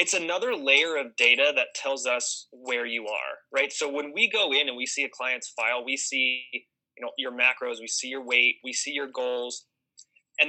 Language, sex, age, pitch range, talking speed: English, male, 20-39, 125-160 Hz, 215 wpm